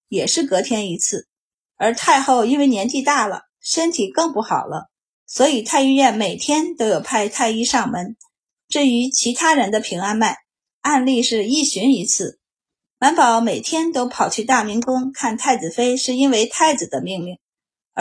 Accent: native